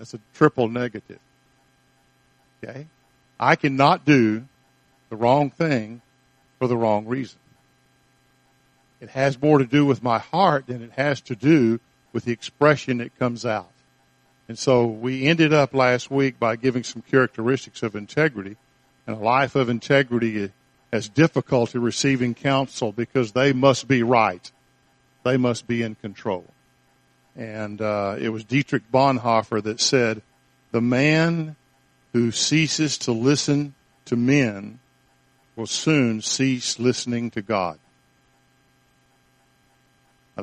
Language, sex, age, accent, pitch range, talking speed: English, male, 50-69, American, 115-135 Hz, 130 wpm